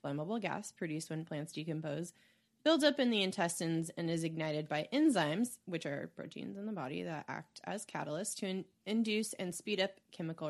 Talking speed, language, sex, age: 185 wpm, English, female, 20-39